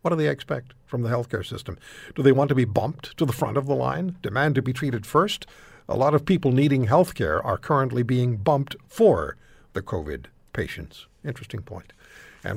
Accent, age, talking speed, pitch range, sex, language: American, 60-79, 200 wpm, 105-155 Hz, male, English